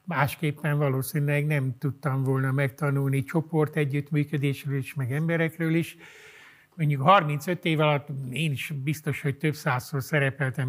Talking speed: 130 wpm